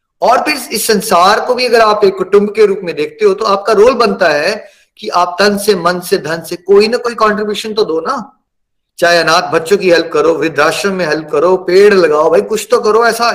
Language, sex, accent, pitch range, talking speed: Hindi, male, native, 185-245 Hz, 235 wpm